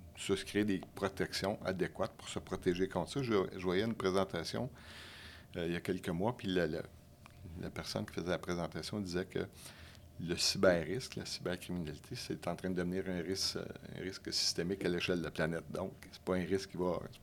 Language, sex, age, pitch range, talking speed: French, male, 60-79, 85-100 Hz, 190 wpm